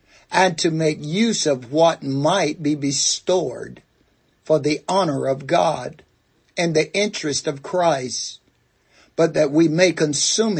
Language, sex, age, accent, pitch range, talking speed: English, male, 60-79, American, 140-200 Hz, 135 wpm